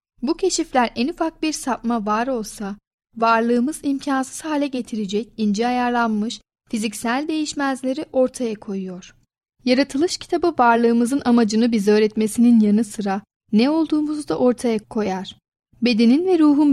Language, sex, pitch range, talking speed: Turkish, female, 220-275 Hz, 120 wpm